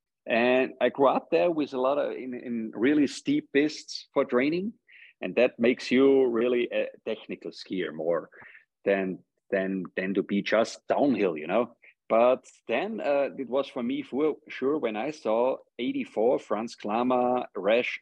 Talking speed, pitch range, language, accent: 165 wpm, 105-145 Hz, English, German